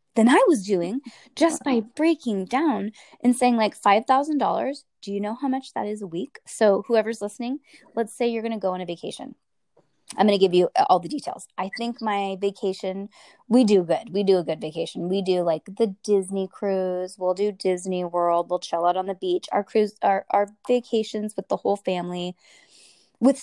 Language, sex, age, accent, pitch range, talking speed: English, female, 20-39, American, 185-235 Hz, 205 wpm